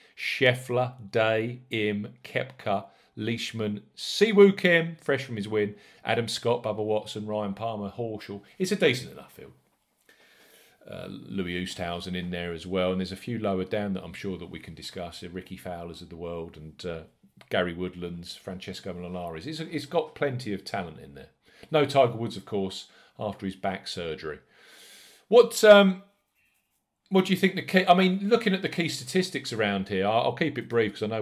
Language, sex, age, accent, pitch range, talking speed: English, male, 40-59, British, 95-125 Hz, 180 wpm